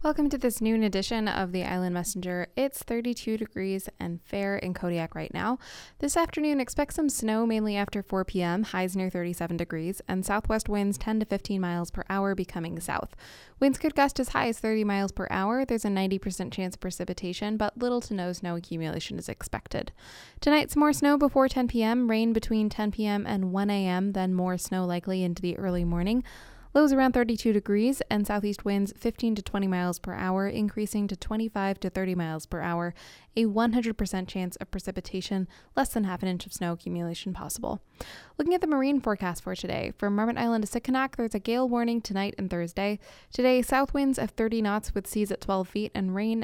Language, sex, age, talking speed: English, female, 10-29, 200 wpm